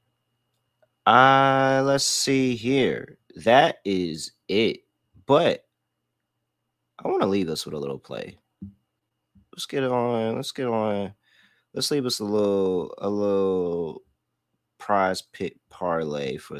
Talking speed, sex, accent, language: 125 wpm, male, American, English